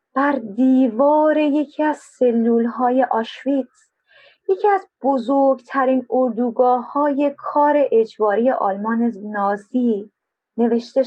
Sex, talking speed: female, 90 wpm